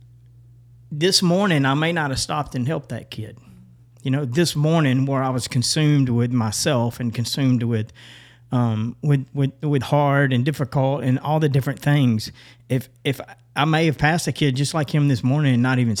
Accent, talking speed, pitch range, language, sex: American, 195 wpm, 120-140 Hz, English, male